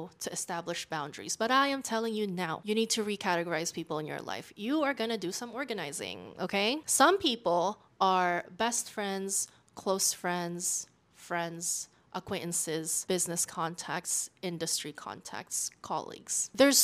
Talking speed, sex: 140 wpm, female